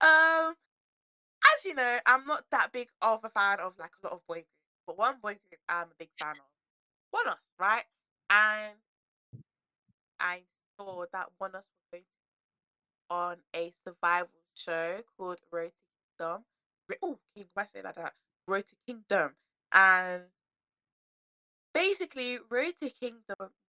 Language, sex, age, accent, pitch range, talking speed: English, female, 20-39, British, 180-245 Hz, 150 wpm